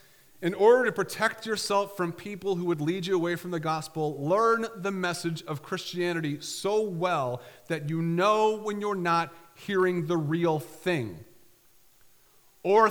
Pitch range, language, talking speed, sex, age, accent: 155-195 Hz, English, 155 wpm, male, 40-59, American